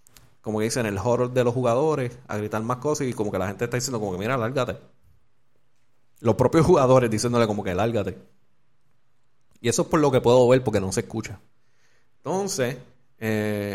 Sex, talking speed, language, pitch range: male, 190 wpm, Spanish, 110-130 Hz